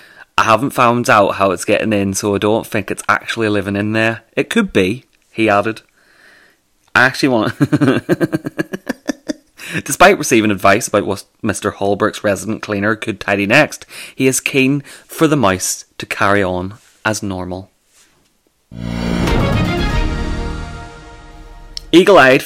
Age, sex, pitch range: 30-49, male, 95-120 Hz